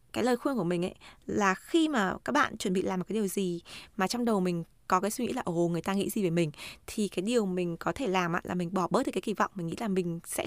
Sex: female